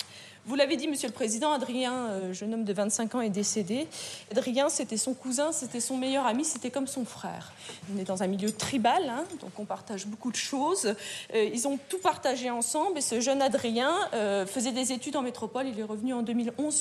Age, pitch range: 20-39, 215-275 Hz